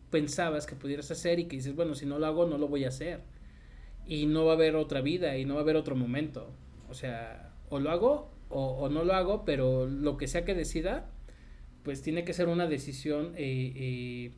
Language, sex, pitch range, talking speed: Spanish, male, 130-165 Hz, 230 wpm